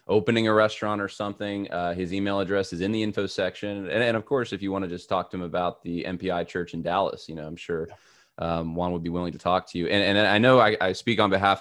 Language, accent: English, American